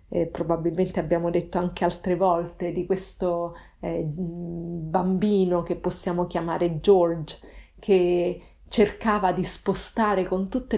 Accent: native